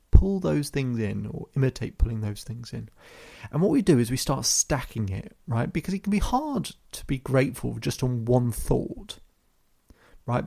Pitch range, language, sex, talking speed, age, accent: 110-130 Hz, English, male, 190 wpm, 30-49, British